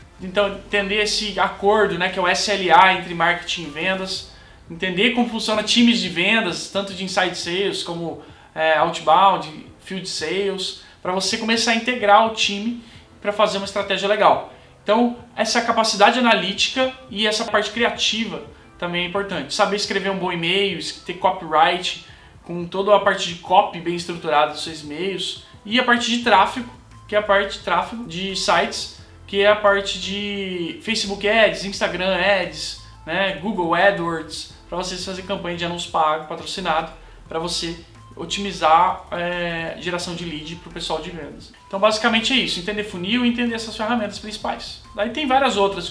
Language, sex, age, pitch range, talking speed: Portuguese, male, 20-39, 170-210 Hz, 165 wpm